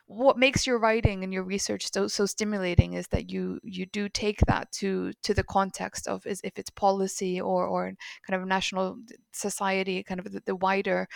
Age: 20-39